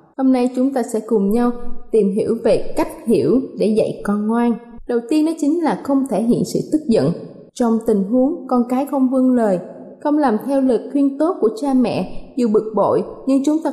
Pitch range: 225-280 Hz